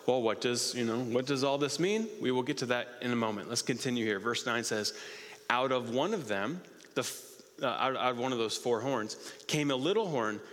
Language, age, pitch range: English, 30-49, 120-165 Hz